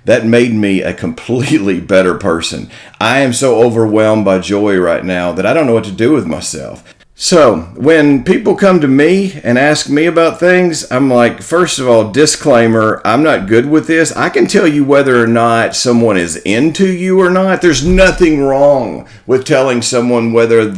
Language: English